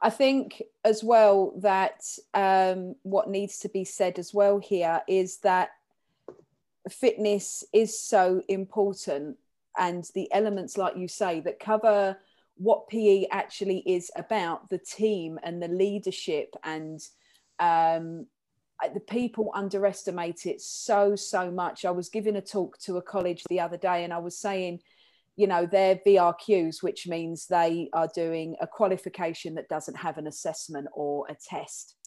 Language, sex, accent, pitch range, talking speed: English, female, British, 170-210 Hz, 150 wpm